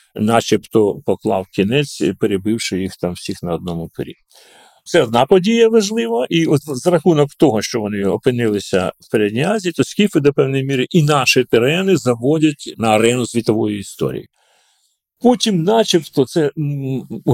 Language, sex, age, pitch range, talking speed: Ukrainian, male, 40-59, 110-155 Hz, 140 wpm